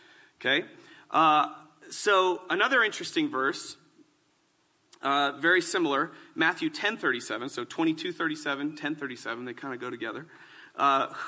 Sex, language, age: male, English, 40-59